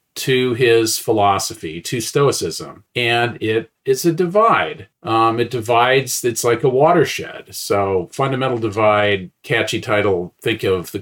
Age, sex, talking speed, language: 40-59, male, 135 wpm, English